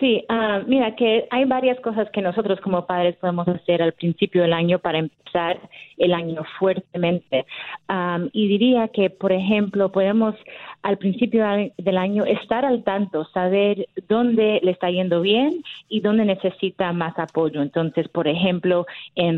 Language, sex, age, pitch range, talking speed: Spanish, female, 30-49, 170-205 Hz, 150 wpm